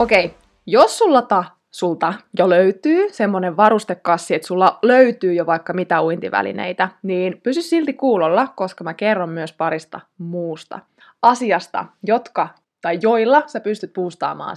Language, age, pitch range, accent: Finnish, 20-39, 180-230 Hz, native